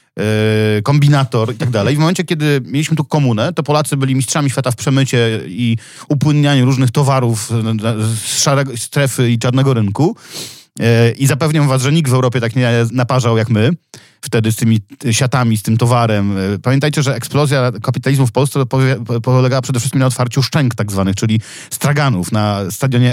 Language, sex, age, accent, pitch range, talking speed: Polish, male, 40-59, native, 115-145 Hz, 165 wpm